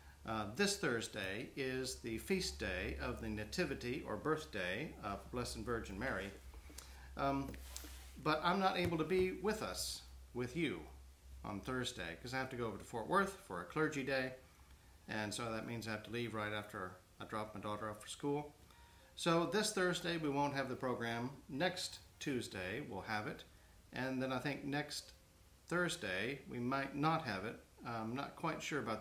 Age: 50-69